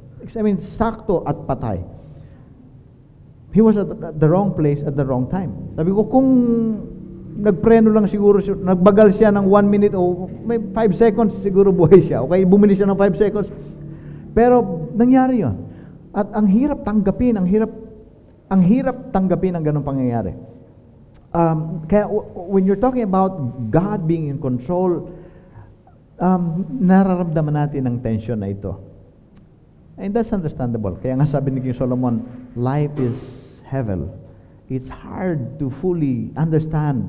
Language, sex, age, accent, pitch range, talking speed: Filipino, male, 50-69, native, 115-190 Hz, 145 wpm